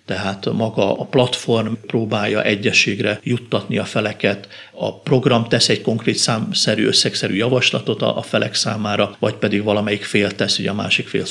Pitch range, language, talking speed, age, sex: 105-125 Hz, Hungarian, 155 wpm, 50-69, male